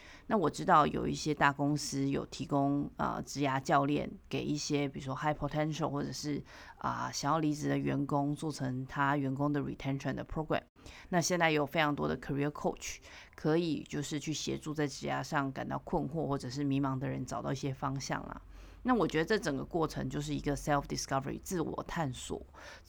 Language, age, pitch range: Chinese, 30-49, 135-155 Hz